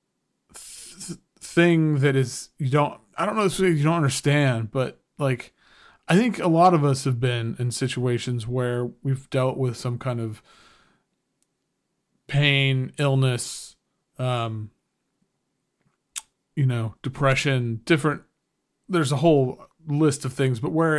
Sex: male